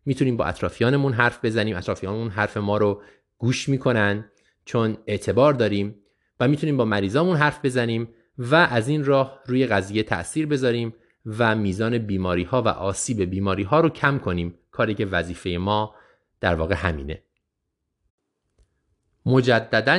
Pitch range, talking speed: 95-130 Hz, 140 wpm